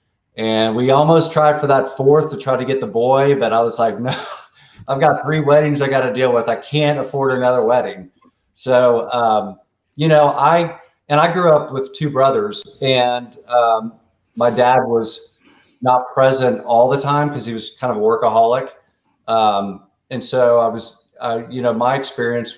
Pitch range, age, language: 115-130 Hz, 40-59, English